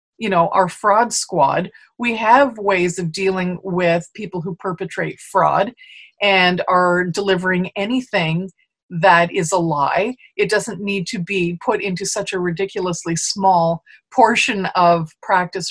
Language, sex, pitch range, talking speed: English, female, 180-235 Hz, 140 wpm